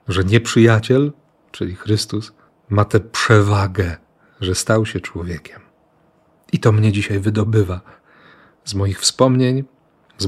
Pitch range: 105-130 Hz